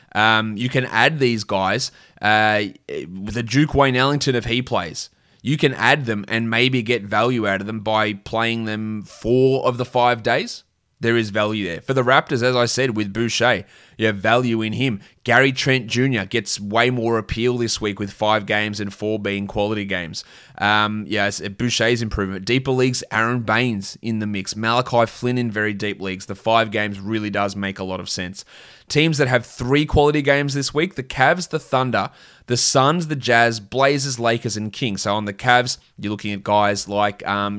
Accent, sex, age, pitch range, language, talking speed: Australian, male, 20-39, 100-120 Hz, English, 200 wpm